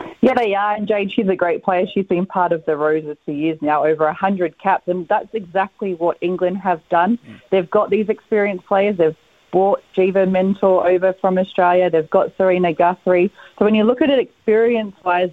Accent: Australian